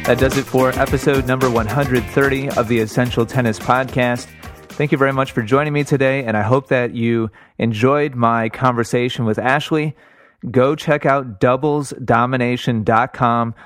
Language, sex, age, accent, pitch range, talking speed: English, male, 30-49, American, 110-130 Hz, 150 wpm